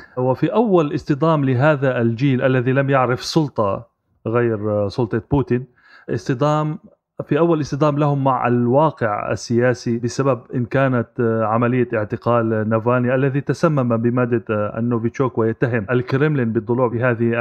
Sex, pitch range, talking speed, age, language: male, 120-150 Hz, 115 wpm, 30-49, Arabic